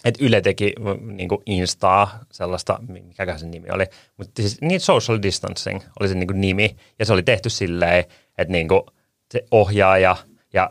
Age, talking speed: 30-49, 155 wpm